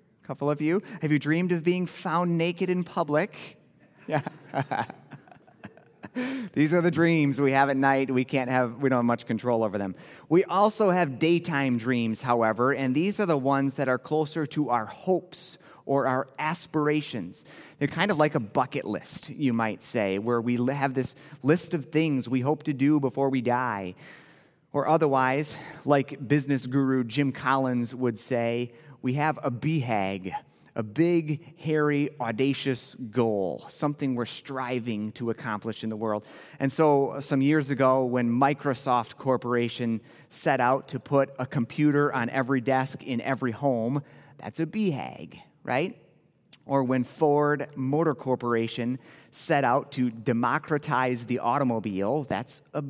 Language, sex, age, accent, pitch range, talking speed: English, male, 30-49, American, 120-155 Hz, 155 wpm